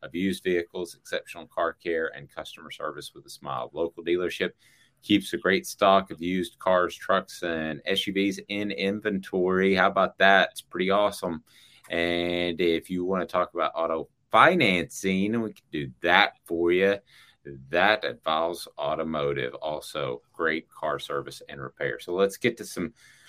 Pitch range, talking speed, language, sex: 85-105 Hz, 155 wpm, English, male